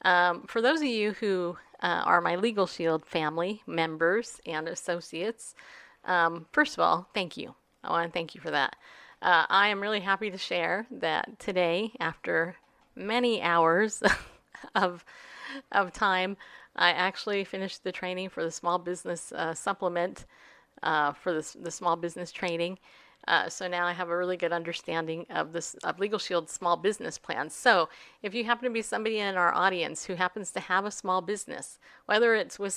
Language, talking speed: English, 180 wpm